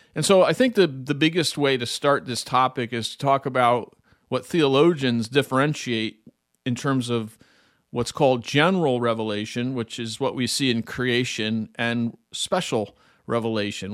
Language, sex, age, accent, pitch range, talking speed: English, male, 40-59, American, 115-145 Hz, 155 wpm